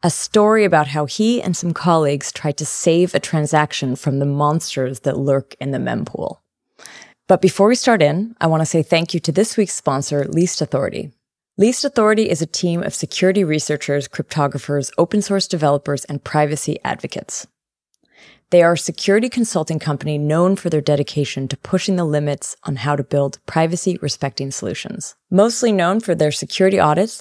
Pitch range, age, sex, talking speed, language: 150-190 Hz, 20-39, female, 170 wpm, English